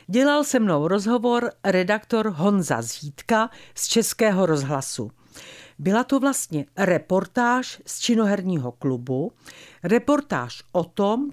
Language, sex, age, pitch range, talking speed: Czech, female, 50-69, 150-230 Hz, 105 wpm